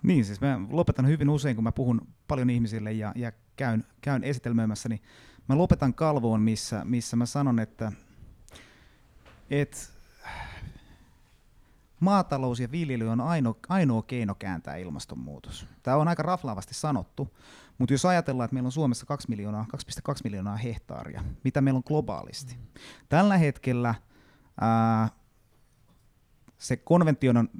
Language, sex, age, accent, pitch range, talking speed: Finnish, male, 30-49, native, 110-140 Hz, 135 wpm